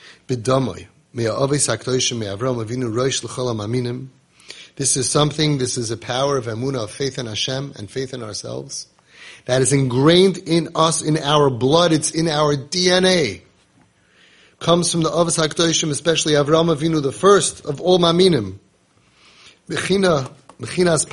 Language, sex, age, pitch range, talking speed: English, male, 30-49, 125-155 Hz, 100 wpm